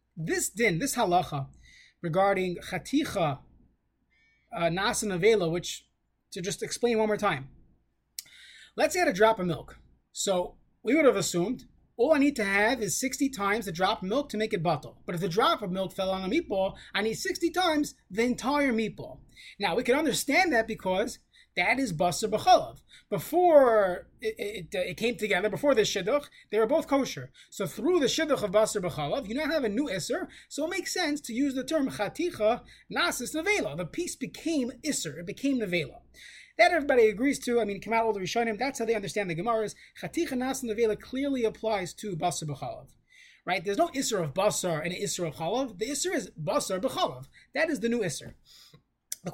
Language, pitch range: English, 195-280 Hz